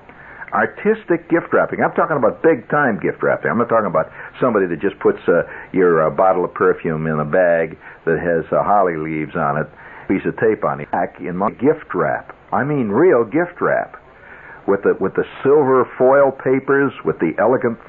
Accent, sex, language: American, male, English